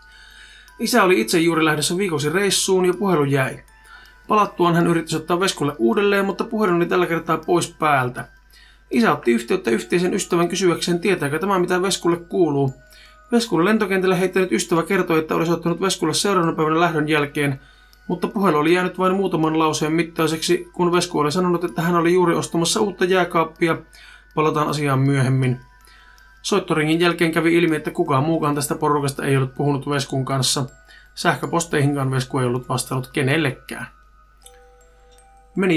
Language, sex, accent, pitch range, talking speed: Finnish, male, native, 150-185 Hz, 150 wpm